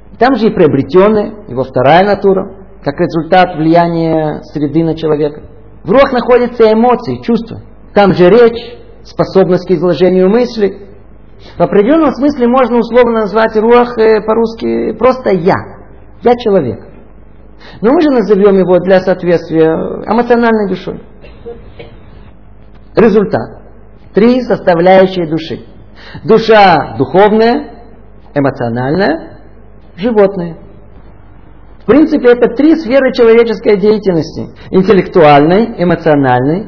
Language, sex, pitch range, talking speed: Russian, male, 135-225 Hz, 105 wpm